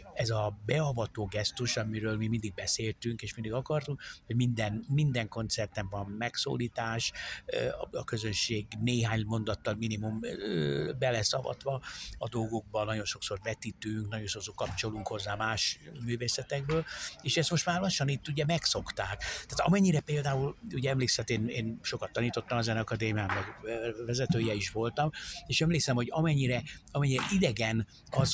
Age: 60-79